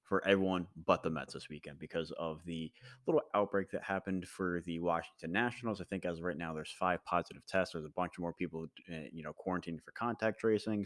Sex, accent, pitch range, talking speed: male, American, 85-100 Hz, 220 wpm